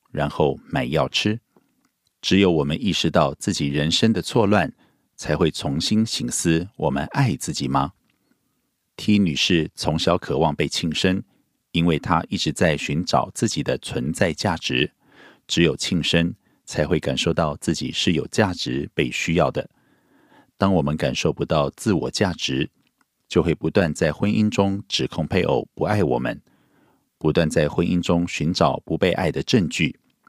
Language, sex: Korean, male